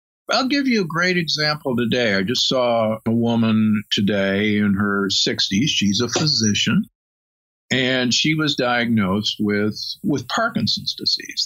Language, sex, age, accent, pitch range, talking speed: English, male, 50-69, American, 110-150 Hz, 140 wpm